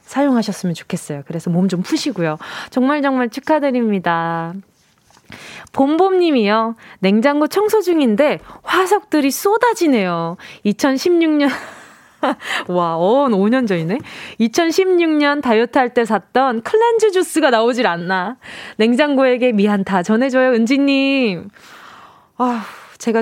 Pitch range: 205-295 Hz